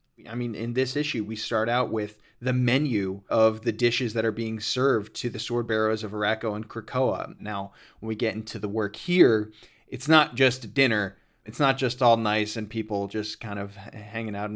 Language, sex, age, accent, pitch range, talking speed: English, male, 30-49, American, 105-125 Hz, 200 wpm